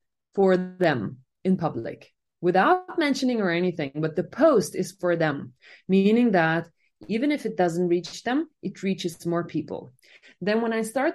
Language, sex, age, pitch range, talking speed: English, female, 20-39, 155-195 Hz, 160 wpm